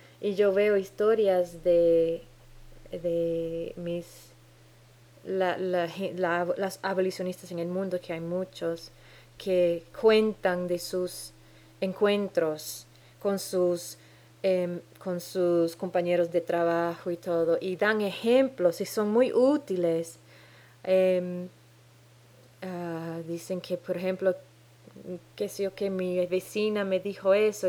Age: 20-39